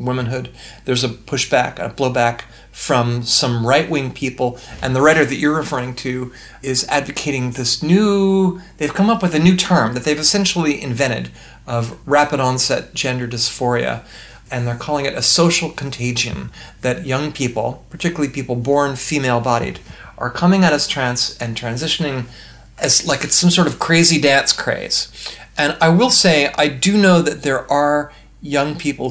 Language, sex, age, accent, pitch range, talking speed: English, male, 40-59, American, 120-150 Hz, 160 wpm